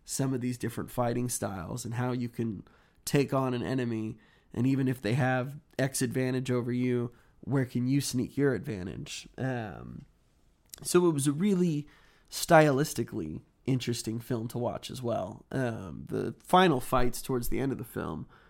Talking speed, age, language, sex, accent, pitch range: 170 wpm, 20-39, English, male, American, 120-155 Hz